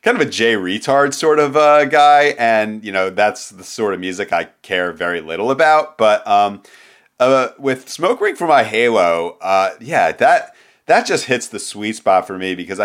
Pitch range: 95-130 Hz